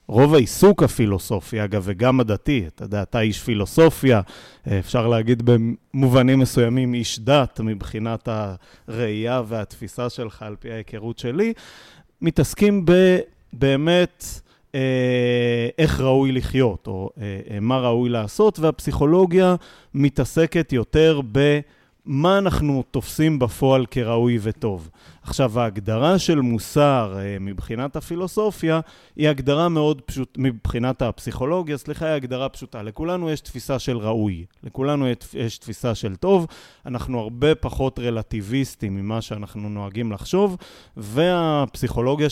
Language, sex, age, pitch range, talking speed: Hebrew, male, 30-49, 110-150 Hz, 110 wpm